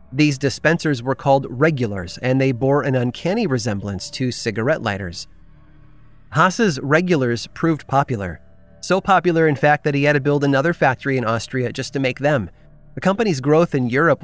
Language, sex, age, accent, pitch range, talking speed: English, male, 30-49, American, 120-160 Hz, 170 wpm